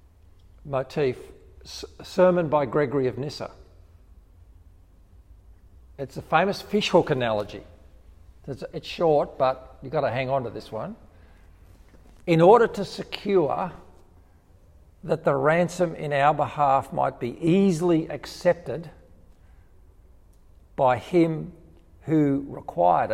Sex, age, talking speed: male, 50-69, 105 wpm